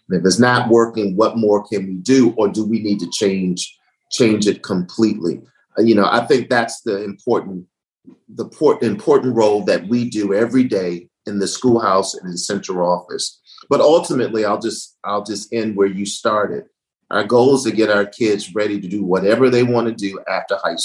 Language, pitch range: English, 100-125 Hz